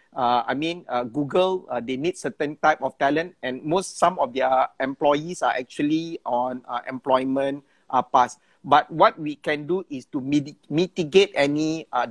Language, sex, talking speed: English, male, 175 wpm